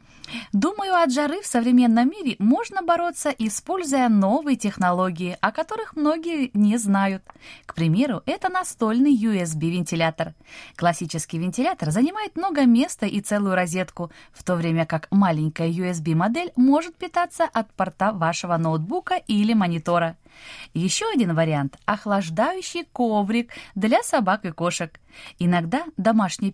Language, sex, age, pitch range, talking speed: Russian, female, 20-39, 170-270 Hz, 125 wpm